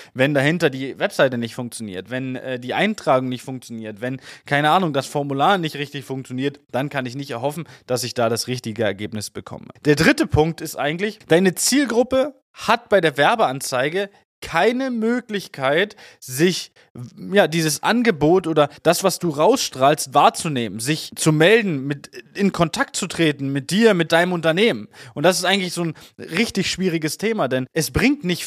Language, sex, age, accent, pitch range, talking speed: German, male, 20-39, German, 140-200 Hz, 165 wpm